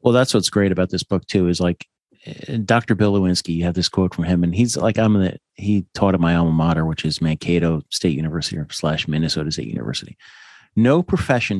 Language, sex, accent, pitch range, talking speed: English, male, American, 85-110 Hz, 215 wpm